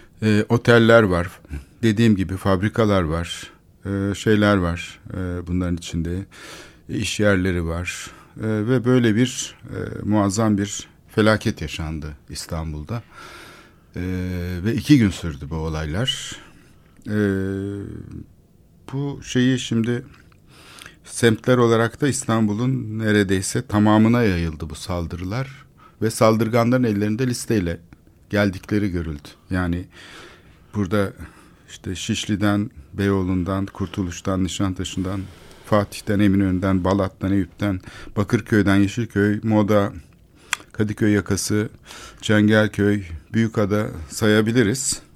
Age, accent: 60-79, native